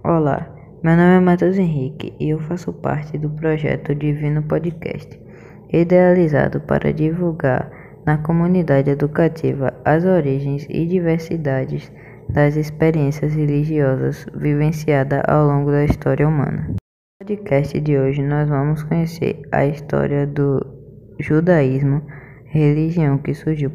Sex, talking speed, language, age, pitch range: female, 120 wpm, Portuguese, 20-39, 140-155 Hz